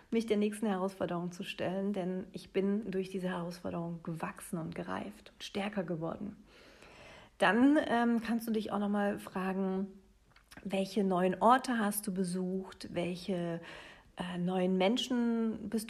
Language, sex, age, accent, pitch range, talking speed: German, female, 40-59, German, 190-225 Hz, 140 wpm